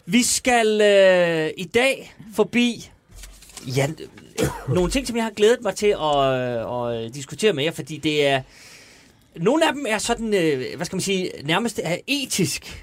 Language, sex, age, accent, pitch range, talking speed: Danish, male, 30-49, native, 145-210 Hz, 180 wpm